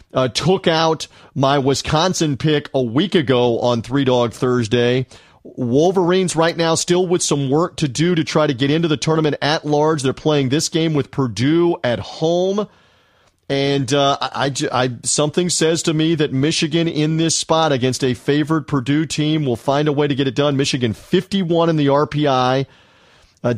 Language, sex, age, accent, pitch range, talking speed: English, male, 40-59, American, 125-160 Hz, 175 wpm